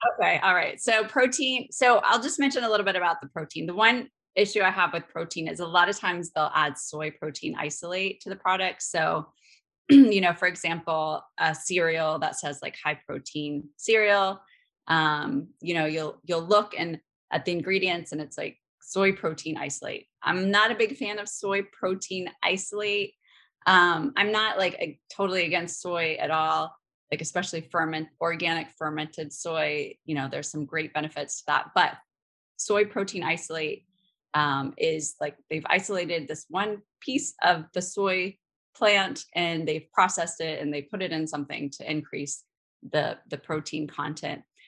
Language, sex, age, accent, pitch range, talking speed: English, female, 20-39, American, 155-195 Hz, 175 wpm